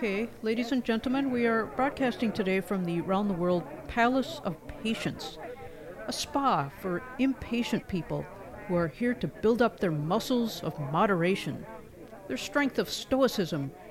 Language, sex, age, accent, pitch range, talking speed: English, female, 50-69, American, 170-230 Hz, 155 wpm